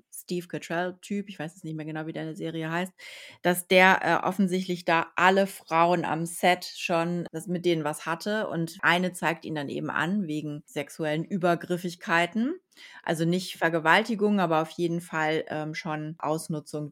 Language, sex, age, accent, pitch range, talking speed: German, female, 30-49, German, 160-185 Hz, 165 wpm